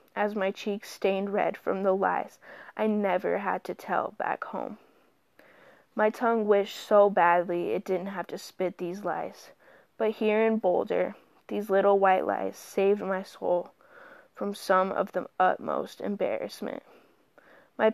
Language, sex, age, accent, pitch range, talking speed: English, female, 20-39, American, 190-215 Hz, 150 wpm